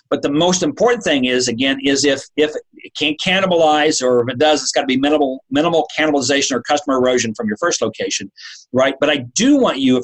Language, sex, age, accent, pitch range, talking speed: English, male, 50-69, American, 120-155 Hz, 225 wpm